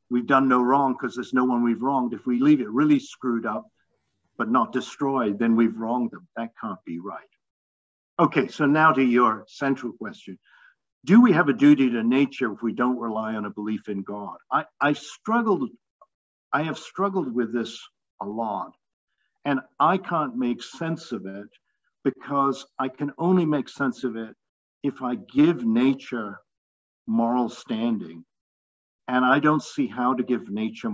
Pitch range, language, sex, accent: 110-150 Hz, English, male, American